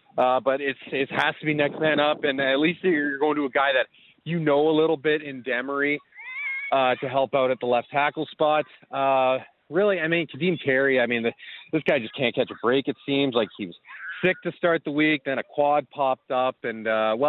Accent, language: American, English